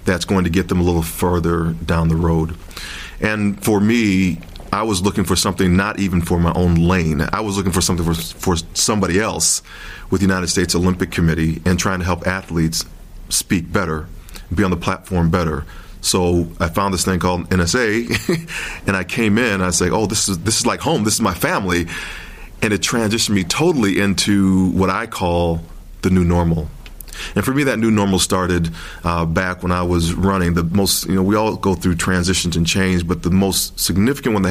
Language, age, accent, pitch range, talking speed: English, 40-59, American, 85-95 Hz, 205 wpm